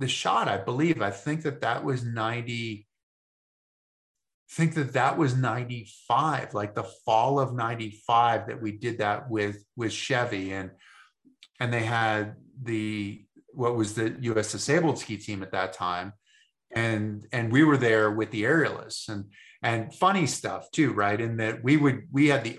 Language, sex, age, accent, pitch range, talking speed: English, male, 30-49, American, 105-135 Hz, 165 wpm